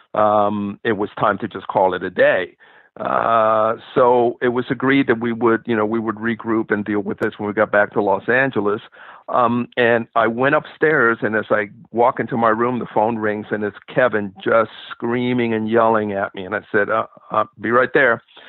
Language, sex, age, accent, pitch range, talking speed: English, male, 50-69, American, 110-125 Hz, 215 wpm